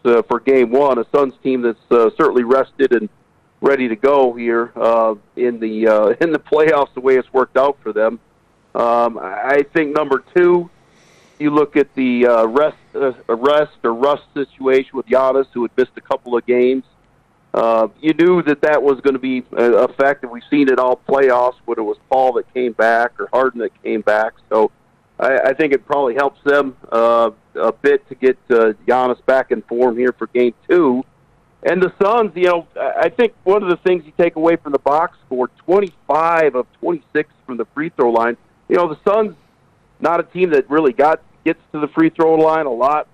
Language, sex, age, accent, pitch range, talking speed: English, male, 50-69, American, 120-160 Hz, 210 wpm